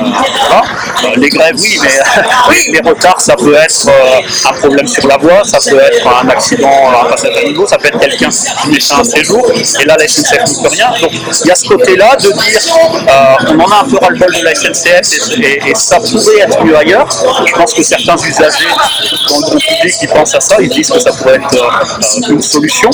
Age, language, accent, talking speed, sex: 40-59, French, French, 230 wpm, male